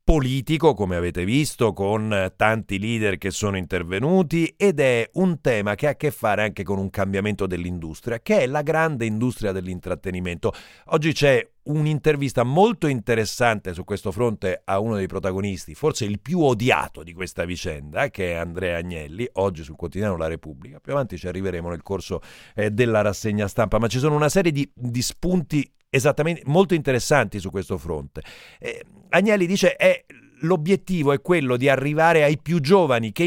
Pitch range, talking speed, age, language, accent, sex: 100-155 Hz, 170 wpm, 50-69, Italian, native, male